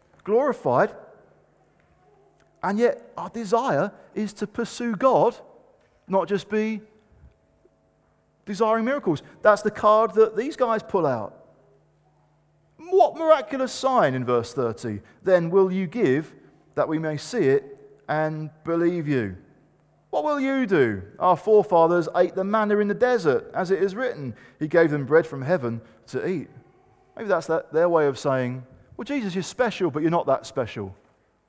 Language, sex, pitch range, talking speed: English, male, 140-225 Hz, 150 wpm